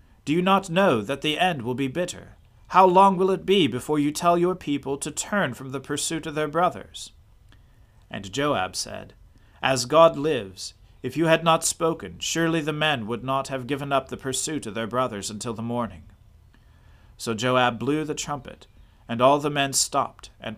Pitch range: 105-145 Hz